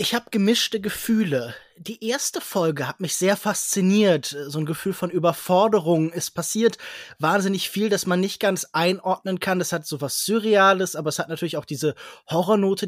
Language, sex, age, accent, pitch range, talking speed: German, male, 20-39, German, 160-205 Hz, 175 wpm